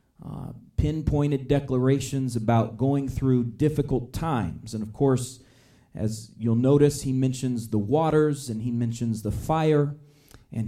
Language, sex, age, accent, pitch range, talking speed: English, male, 40-59, American, 120-150 Hz, 135 wpm